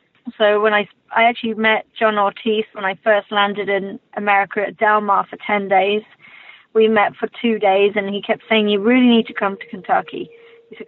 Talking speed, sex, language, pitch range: 210 wpm, female, English, 200-220 Hz